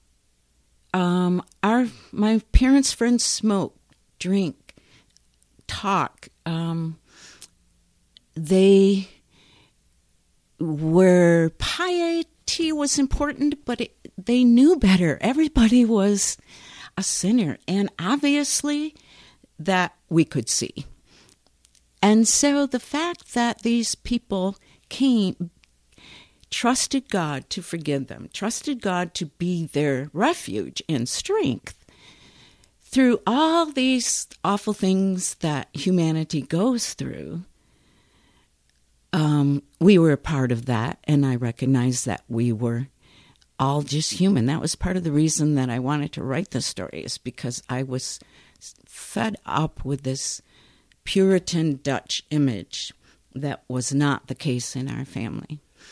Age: 50-69